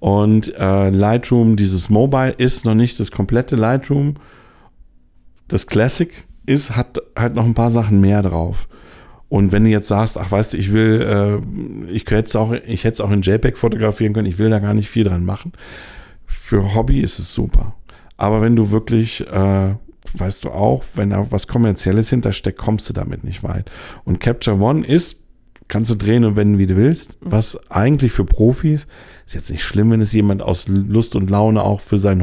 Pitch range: 100-120 Hz